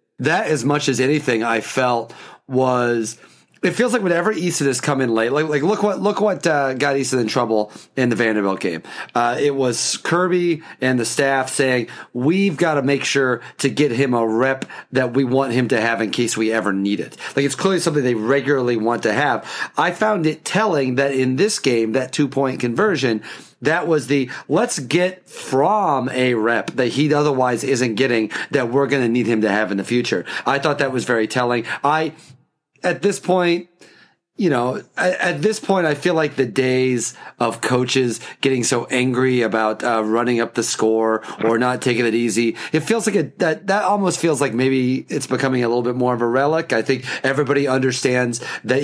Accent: American